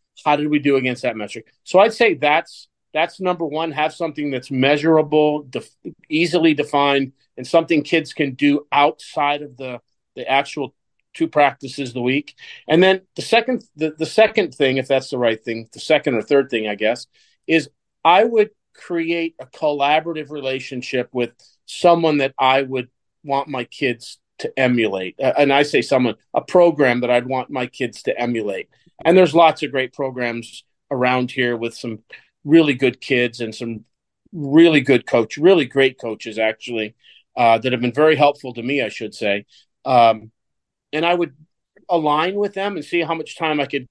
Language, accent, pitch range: English, American, 125-160 Hz